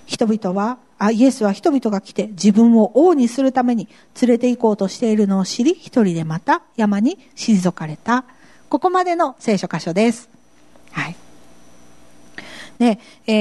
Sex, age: female, 40-59